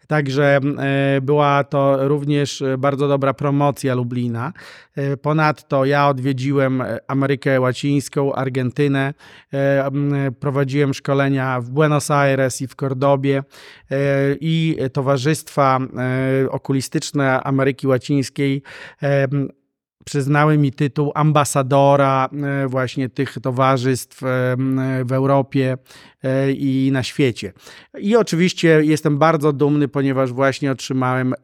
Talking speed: 90 wpm